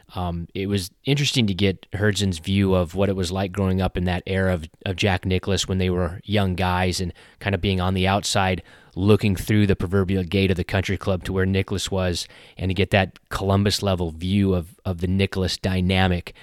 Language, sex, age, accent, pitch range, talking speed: English, male, 30-49, American, 90-105 Hz, 215 wpm